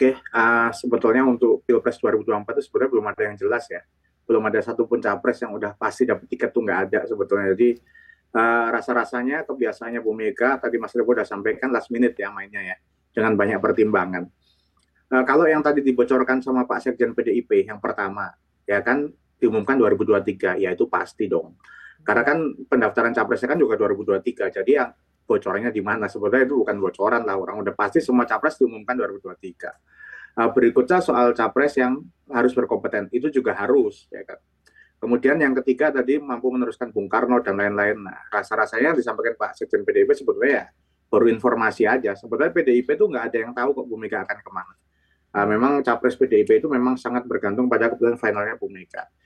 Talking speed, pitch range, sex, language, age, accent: 180 wpm, 115-165 Hz, male, Indonesian, 30-49, native